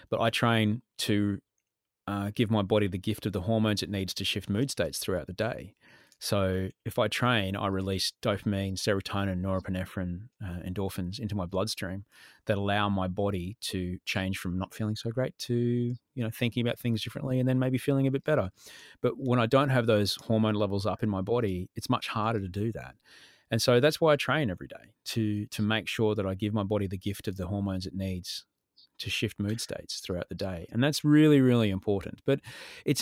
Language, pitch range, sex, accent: English, 100-130 Hz, male, Australian